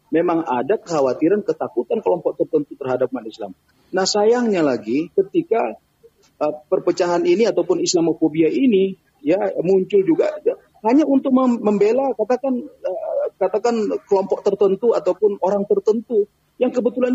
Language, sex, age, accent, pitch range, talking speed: Indonesian, male, 40-59, native, 165-265 Hz, 125 wpm